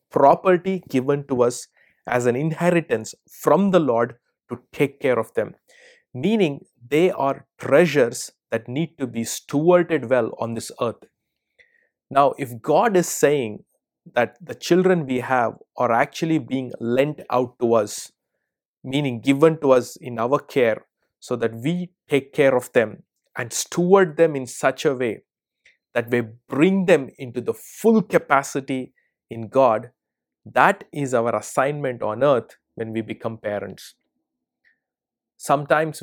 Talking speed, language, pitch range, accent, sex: 145 wpm, English, 120-165 Hz, Indian, male